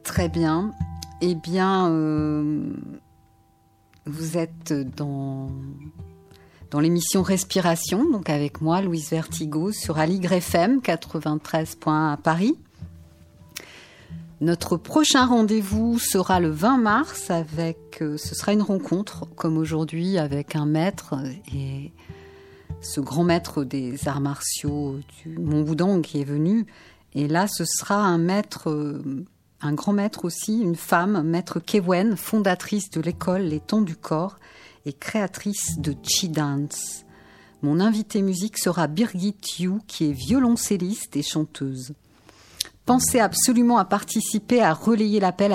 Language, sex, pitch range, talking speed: French, female, 150-195 Hz, 130 wpm